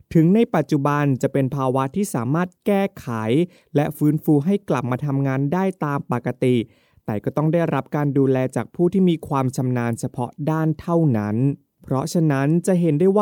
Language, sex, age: Thai, male, 20-39